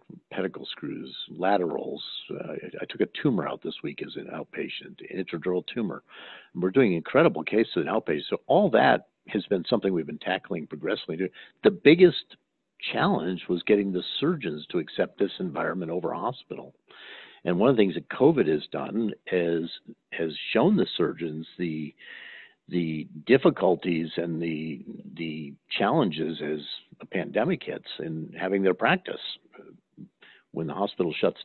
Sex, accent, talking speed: male, American, 150 wpm